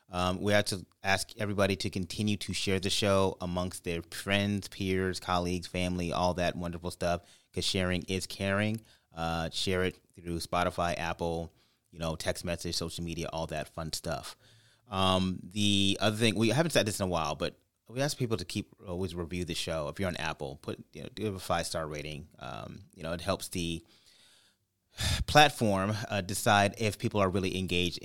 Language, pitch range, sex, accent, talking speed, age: English, 85-105 Hz, male, American, 195 wpm, 30-49